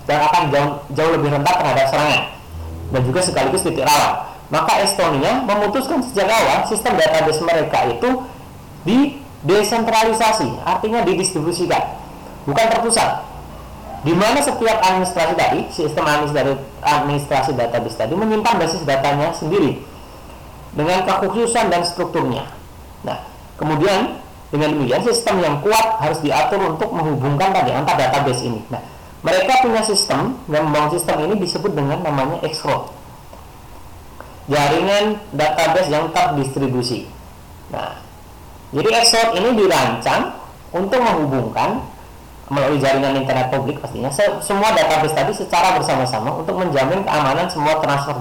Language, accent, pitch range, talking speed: Indonesian, native, 140-205 Hz, 120 wpm